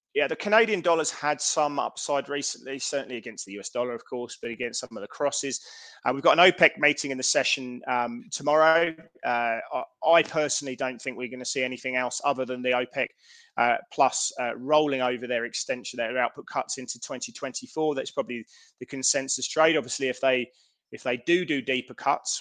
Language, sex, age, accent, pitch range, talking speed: English, male, 20-39, British, 120-140 Hz, 195 wpm